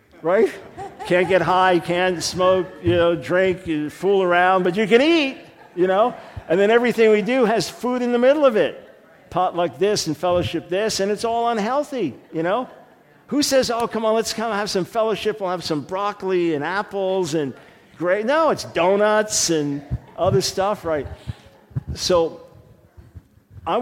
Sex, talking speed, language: male, 170 wpm, English